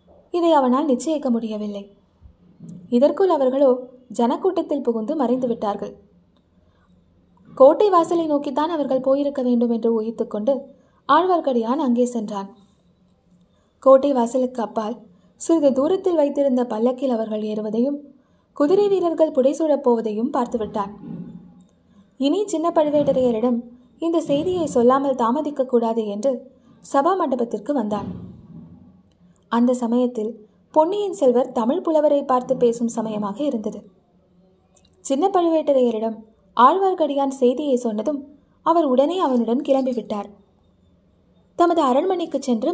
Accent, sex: native, female